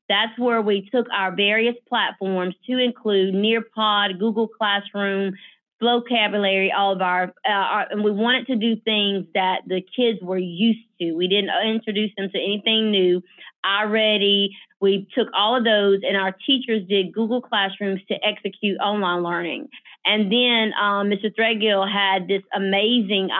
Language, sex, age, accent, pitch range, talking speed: English, female, 30-49, American, 195-230 Hz, 155 wpm